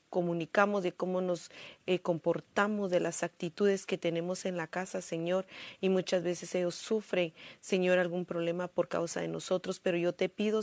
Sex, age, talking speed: female, 40-59, 175 wpm